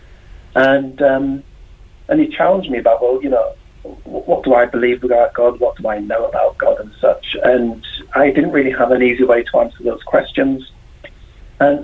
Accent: British